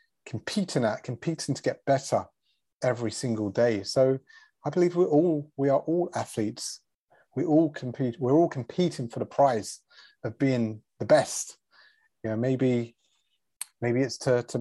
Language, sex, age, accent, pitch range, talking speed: English, male, 30-49, British, 115-150 Hz, 155 wpm